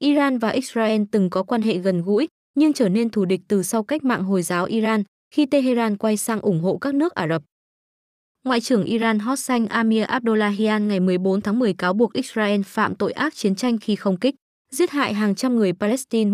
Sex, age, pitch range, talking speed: female, 20-39, 195-245 Hz, 215 wpm